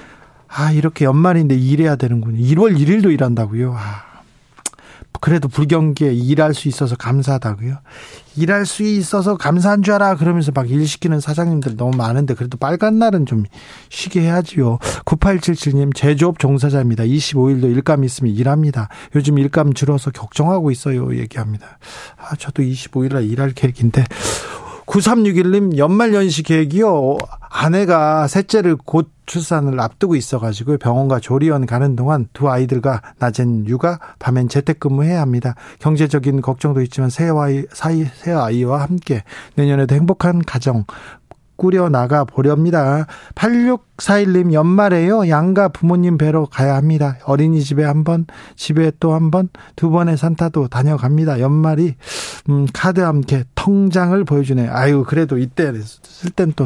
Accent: native